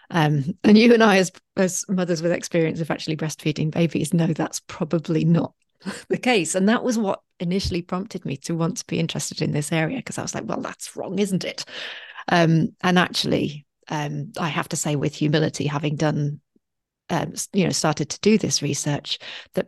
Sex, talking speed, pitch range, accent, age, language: female, 200 wpm, 150-180 Hz, British, 40-59, English